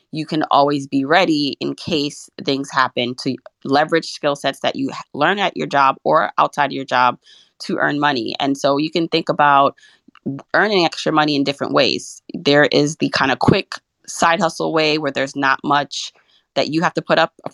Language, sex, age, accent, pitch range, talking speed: English, female, 20-39, American, 135-160 Hz, 200 wpm